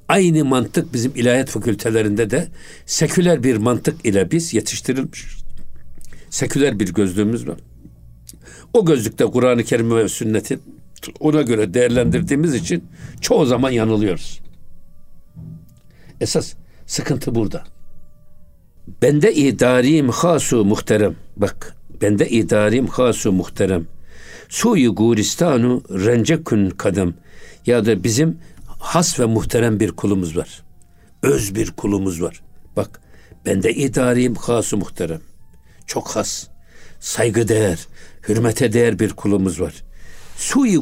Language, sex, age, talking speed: Turkish, male, 60-79, 110 wpm